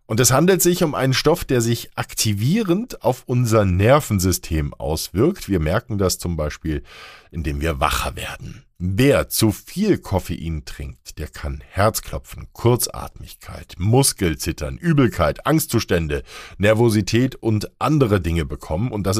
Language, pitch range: German, 85-125 Hz